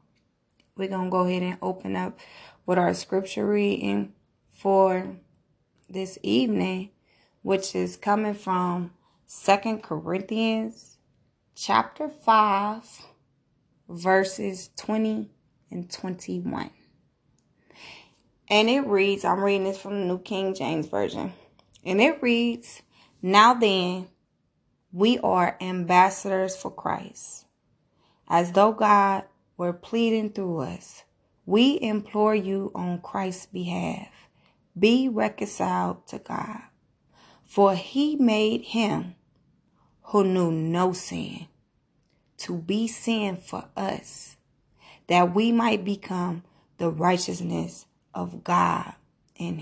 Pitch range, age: 175-210 Hz, 20-39